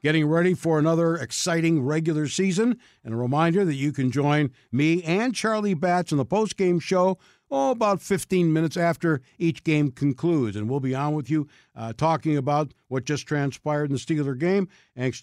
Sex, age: male, 60-79